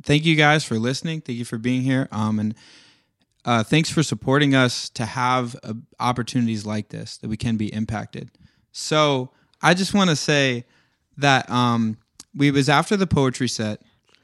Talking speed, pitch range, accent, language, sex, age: 175 wpm, 115-135 Hz, American, English, male, 20-39